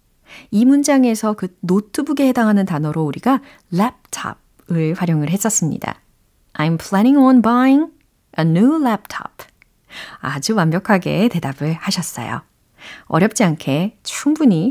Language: Korean